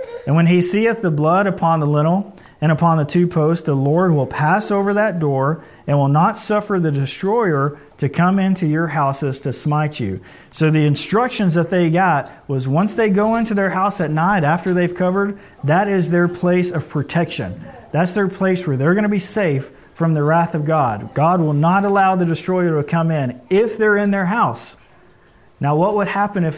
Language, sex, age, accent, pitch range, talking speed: English, male, 40-59, American, 150-185 Hz, 210 wpm